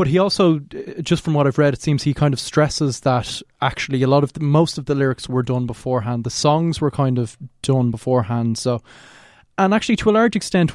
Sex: male